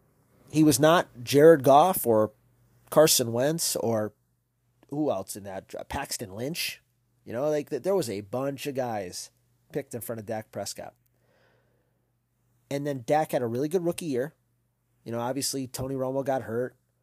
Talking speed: 160 wpm